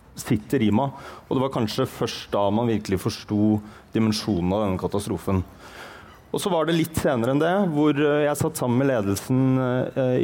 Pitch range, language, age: 105-135 Hz, English, 30-49